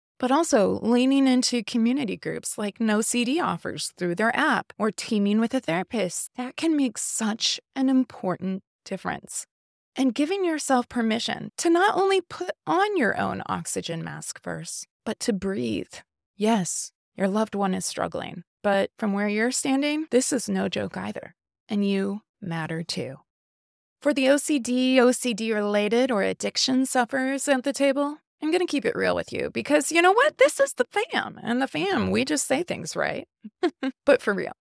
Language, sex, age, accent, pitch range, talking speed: English, female, 20-39, American, 210-280 Hz, 170 wpm